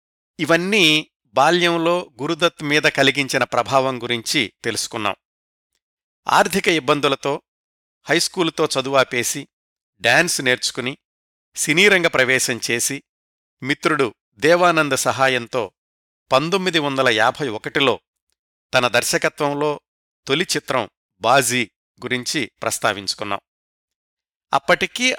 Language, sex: Telugu, male